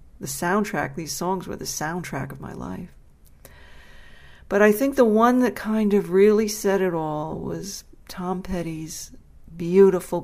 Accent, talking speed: American, 150 wpm